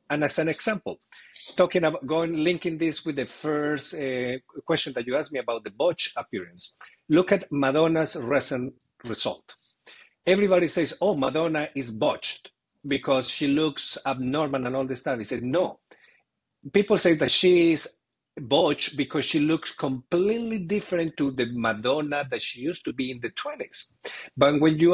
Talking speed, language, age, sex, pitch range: 165 wpm, English, 50-69, male, 140-180 Hz